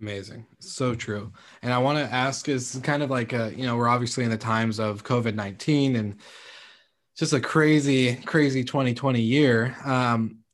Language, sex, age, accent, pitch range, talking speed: English, male, 20-39, American, 110-130 Hz, 175 wpm